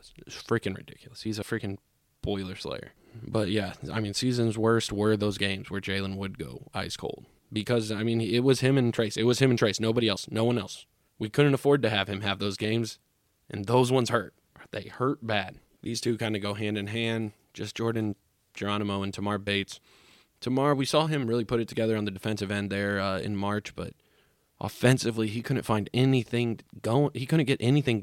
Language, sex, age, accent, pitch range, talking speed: English, male, 20-39, American, 105-120 Hz, 210 wpm